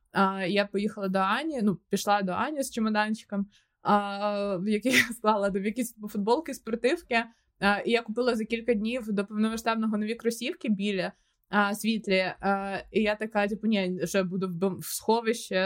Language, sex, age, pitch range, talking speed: Ukrainian, female, 20-39, 205-270 Hz, 165 wpm